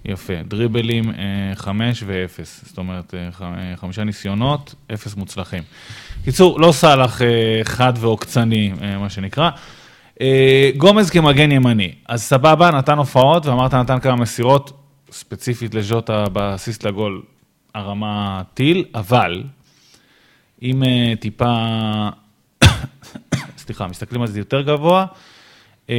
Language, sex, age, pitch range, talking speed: Hebrew, male, 20-39, 100-130 Hz, 100 wpm